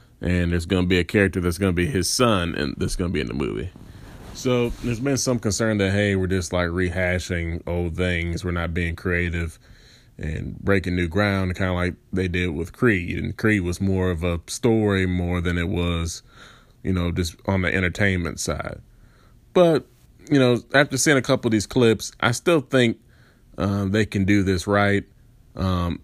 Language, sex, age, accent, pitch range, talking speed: English, male, 20-39, American, 90-110 Hz, 200 wpm